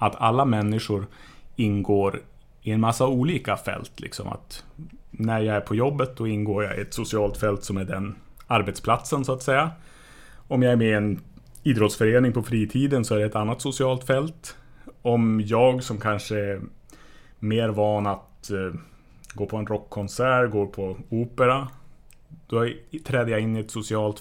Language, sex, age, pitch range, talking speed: English, male, 30-49, 100-125 Hz, 170 wpm